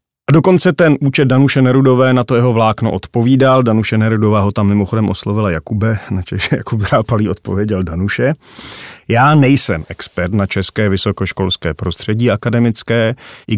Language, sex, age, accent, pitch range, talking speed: Czech, male, 30-49, native, 95-115 Hz, 145 wpm